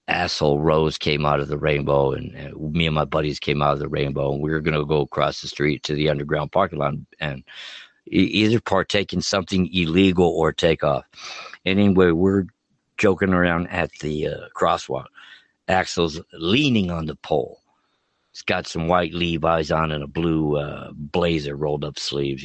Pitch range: 75-90 Hz